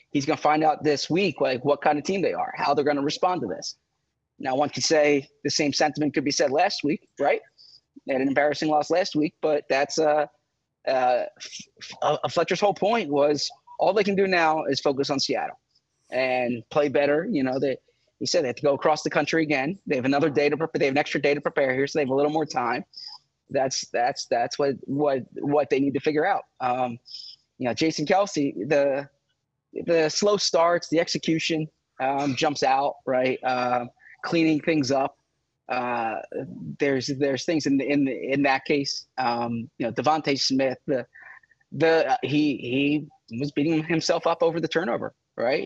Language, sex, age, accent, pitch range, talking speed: English, male, 20-39, American, 140-160 Hz, 205 wpm